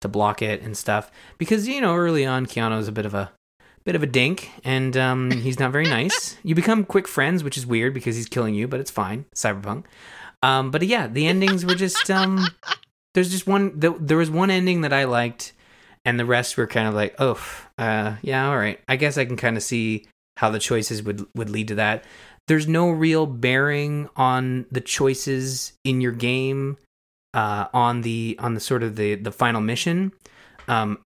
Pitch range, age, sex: 105-135 Hz, 20-39, male